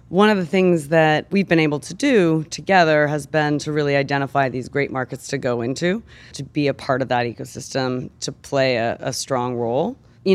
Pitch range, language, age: 140-185 Hz, English, 30-49